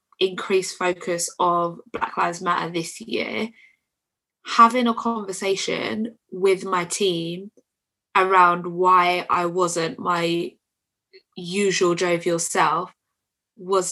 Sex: female